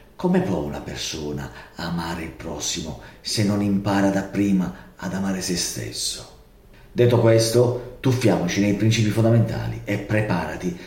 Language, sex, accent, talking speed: Italian, male, native, 125 wpm